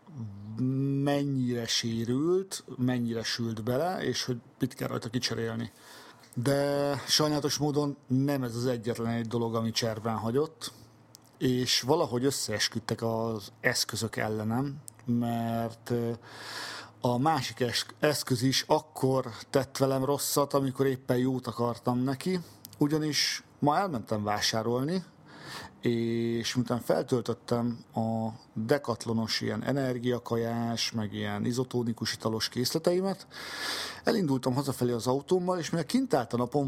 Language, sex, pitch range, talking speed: Hungarian, male, 115-140 Hz, 115 wpm